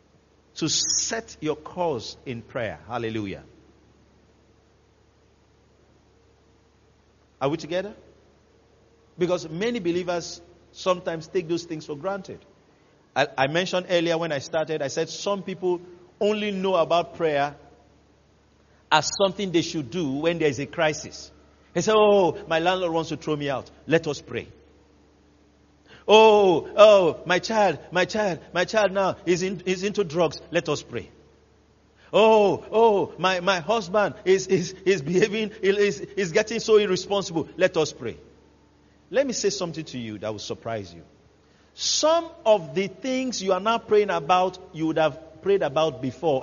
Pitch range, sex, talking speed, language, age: 135-200 Hz, male, 150 wpm, English, 50-69